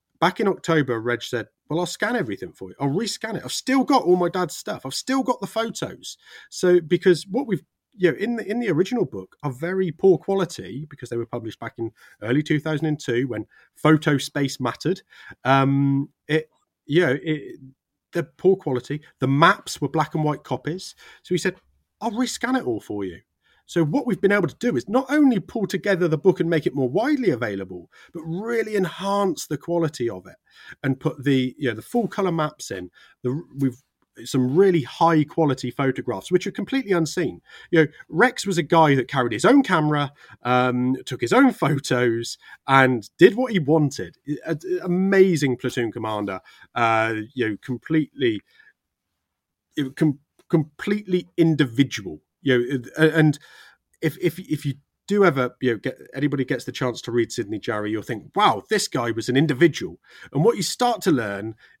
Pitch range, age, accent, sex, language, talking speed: 130-185 Hz, 30-49, British, male, English, 185 wpm